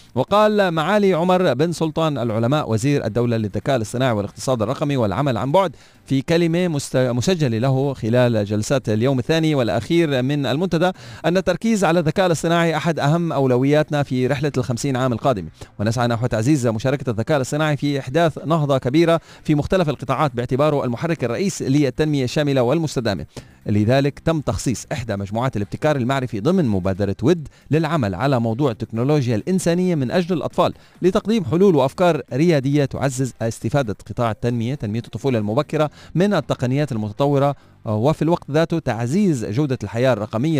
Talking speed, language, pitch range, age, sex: 145 wpm, Arabic, 120-160 Hz, 40-59, male